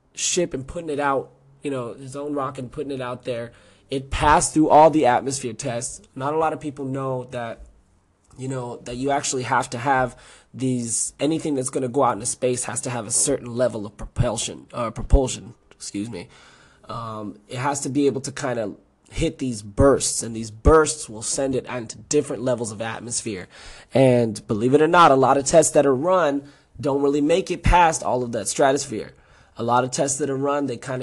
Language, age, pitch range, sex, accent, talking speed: English, 20-39, 120-145 Hz, male, American, 215 wpm